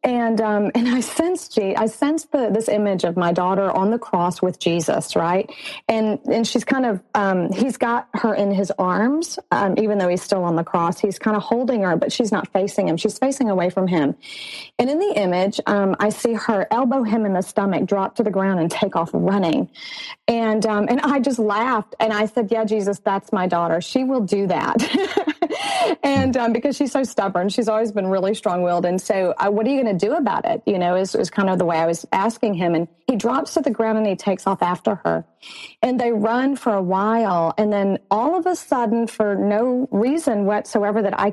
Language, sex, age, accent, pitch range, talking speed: English, female, 30-49, American, 190-235 Hz, 230 wpm